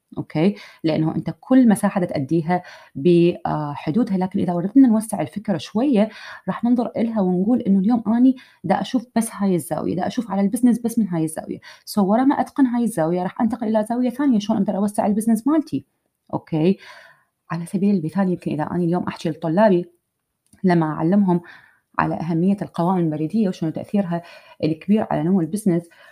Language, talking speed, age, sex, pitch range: Arabic, 165 wpm, 30-49, female, 165-225 Hz